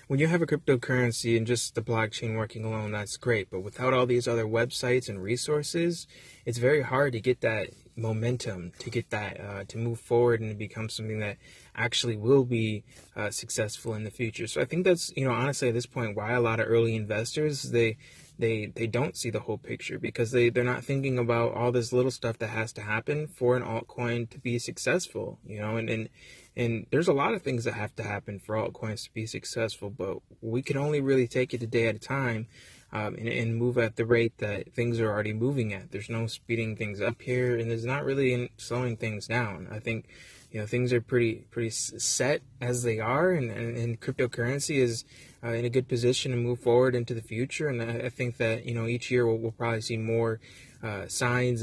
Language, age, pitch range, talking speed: English, 20-39, 110-125 Hz, 225 wpm